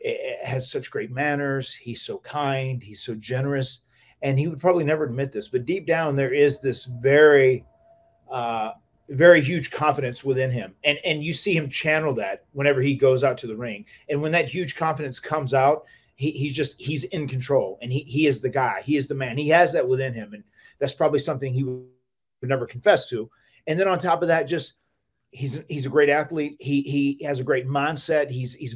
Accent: American